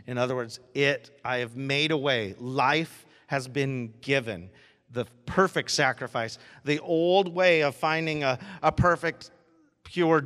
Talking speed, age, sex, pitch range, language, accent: 145 wpm, 40-59, male, 130-170 Hz, English, American